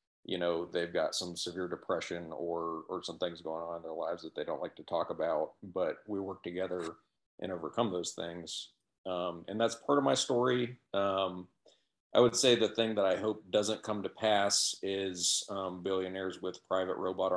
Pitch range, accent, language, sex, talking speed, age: 90-100 Hz, American, English, male, 195 wpm, 40-59